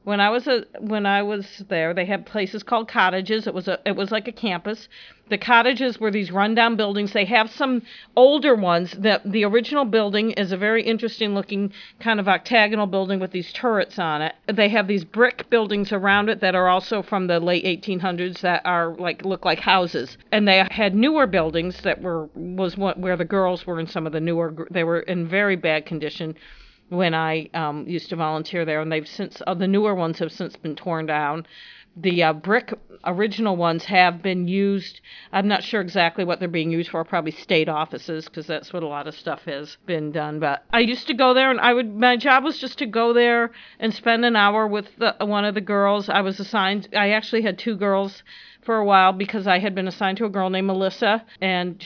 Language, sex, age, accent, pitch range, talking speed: English, female, 50-69, American, 175-220 Hz, 225 wpm